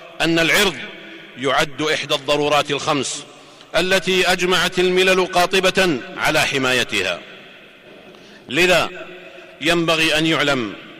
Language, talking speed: Arabic, 85 wpm